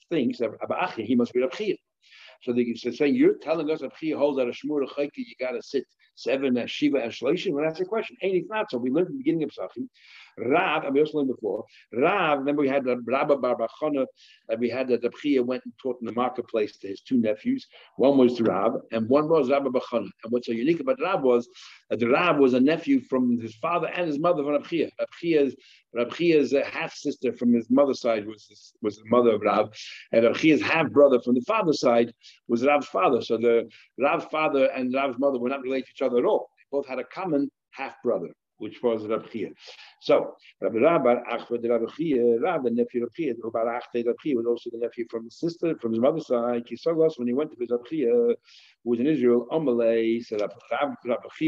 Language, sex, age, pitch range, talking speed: English, male, 60-79, 120-155 Hz, 210 wpm